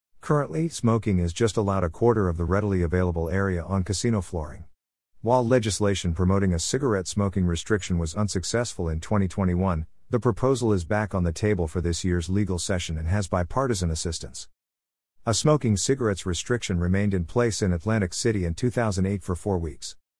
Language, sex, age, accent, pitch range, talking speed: English, male, 50-69, American, 85-105 Hz, 170 wpm